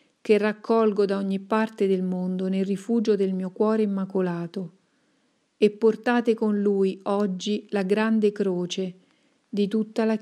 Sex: female